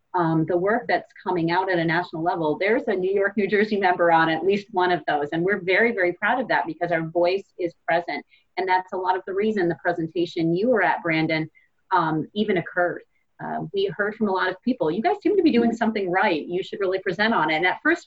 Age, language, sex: 30-49, English, female